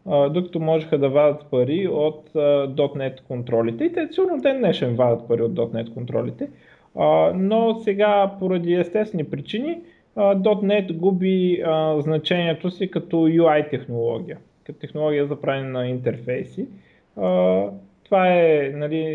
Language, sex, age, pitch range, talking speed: Bulgarian, male, 20-39, 140-180 Hz, 130 wpm